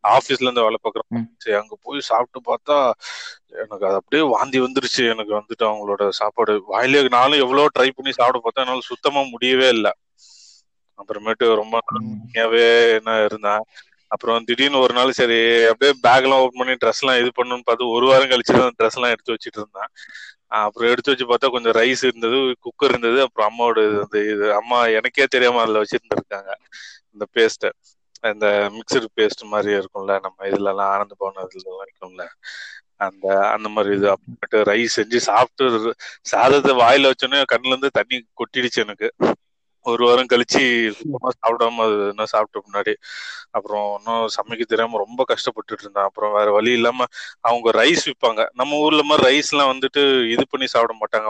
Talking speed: 145 wpm